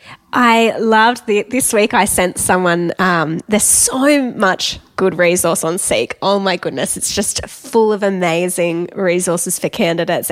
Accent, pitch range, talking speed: Australian, 180-225 Hz, 155 wpm